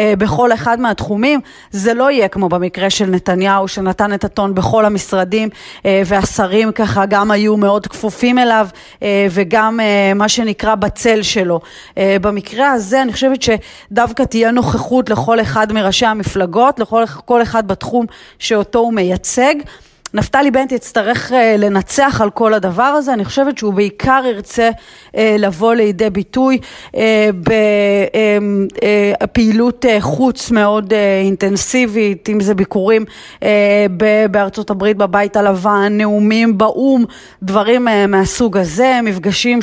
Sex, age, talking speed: female, 30-49, 115 wpm